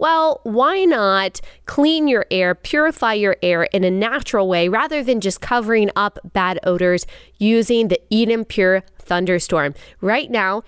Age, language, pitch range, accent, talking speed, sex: 20-39, English, 190-245 Hz, American, 150 wpm, female